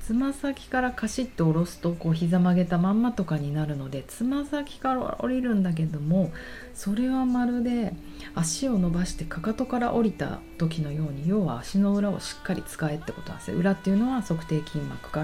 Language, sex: Japanese, female